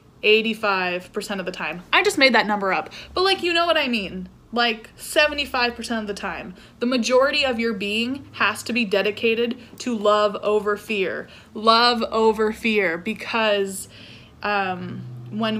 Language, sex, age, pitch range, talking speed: English, female, 20-39, 205-250 Hz, 155 wpm